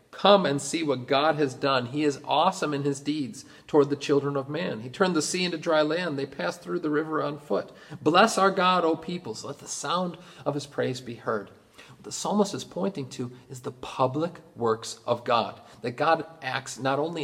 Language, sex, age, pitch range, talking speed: English, male, 40-59, 130-170 Hz, 215 wpm